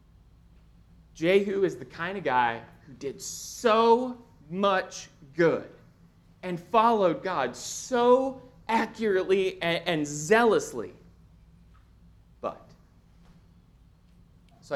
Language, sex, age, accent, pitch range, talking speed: English, male, 30-49, American, 150-220 Hz, 80 wpm